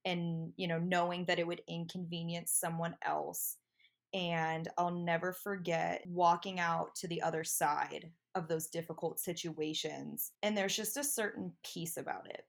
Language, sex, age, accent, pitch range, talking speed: English, female, 20-39, American, 165-185 Hz, 155 wpm